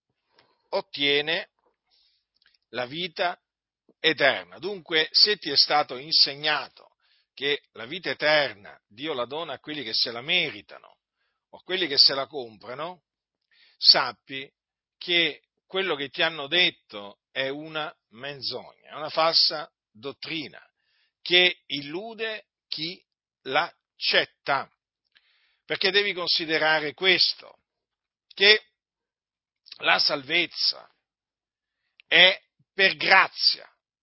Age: 50-69